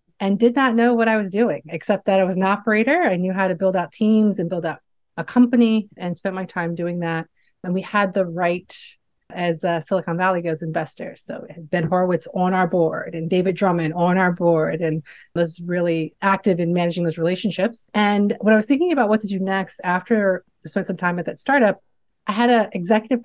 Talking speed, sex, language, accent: 220 wpm, female, English, American